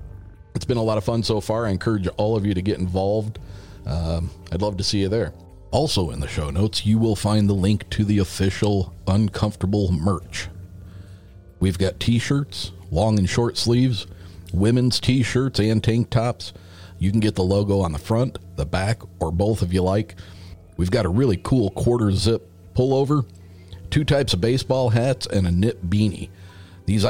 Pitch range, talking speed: 90-110 Hz, 185 wpm